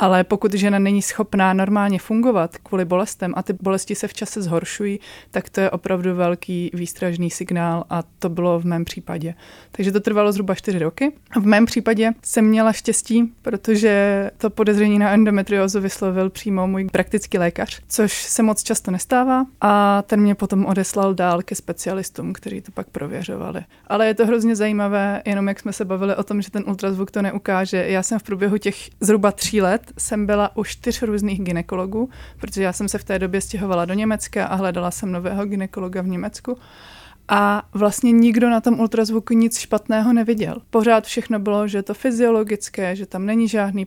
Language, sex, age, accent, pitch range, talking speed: Czech, female, 30-49, native, 190-215 Hz, 185 wpm